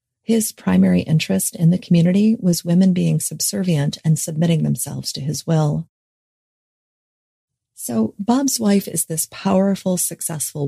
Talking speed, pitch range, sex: 130 wpm, 155-185 Hz, female